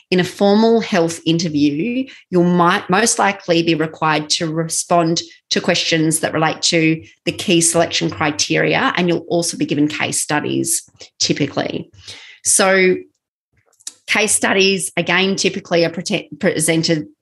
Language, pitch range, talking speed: English, 160-200 Hz, 125 wpm